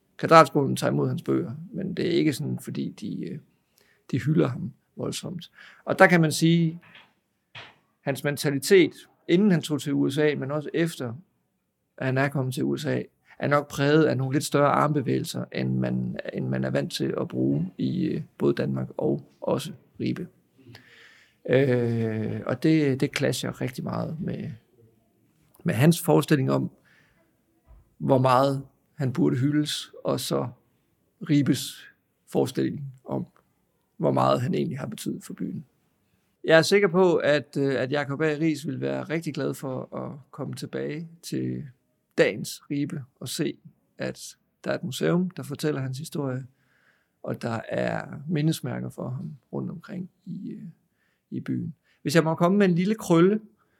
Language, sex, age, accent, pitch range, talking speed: Danish, male, 50-69, native, 125-165 Hz, 155 wpm